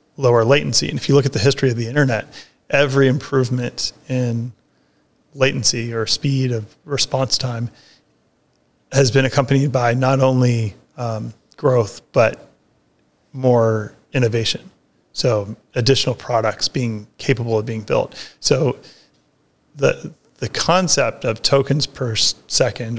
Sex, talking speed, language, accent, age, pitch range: male, 125 wpm, English, American, 30-49, 115-135 Hz